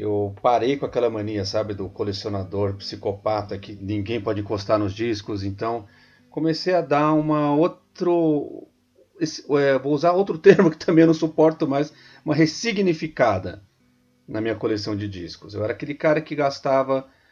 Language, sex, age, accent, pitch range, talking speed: Portuguese, male, 40-59, Brazilian, 105-155 Hz, 160 wpm